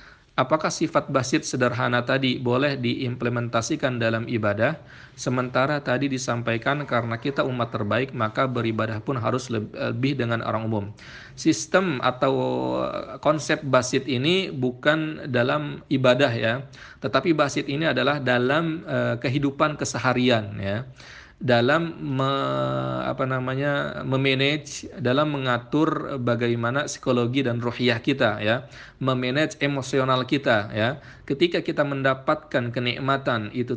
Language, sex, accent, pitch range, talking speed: Indonesian, male, native, 115-140 Hz, 110 wpm